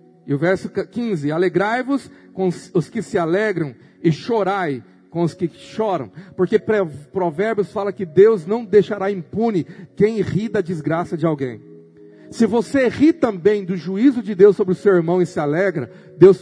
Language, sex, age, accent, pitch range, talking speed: Portuguese, male, 50-69, Brazilian, 170-220 Hz, 170 wpm